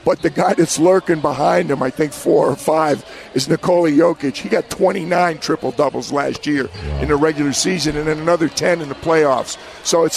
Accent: American